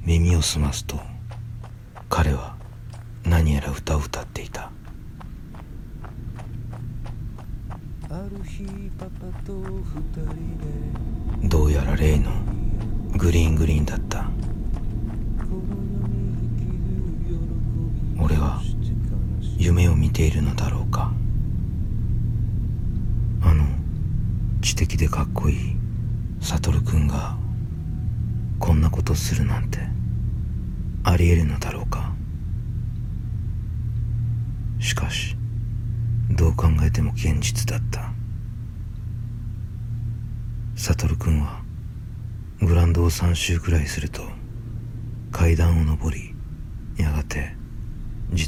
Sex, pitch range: male, 85-115 Hz